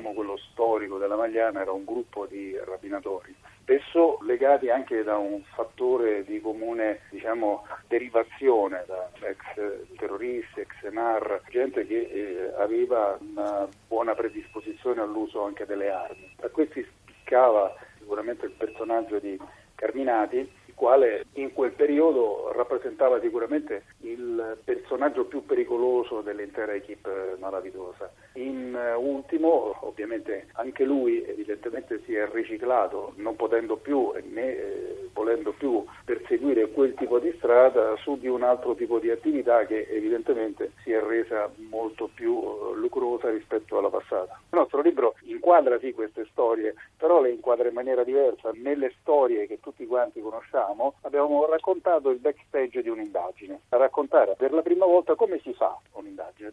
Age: 40-59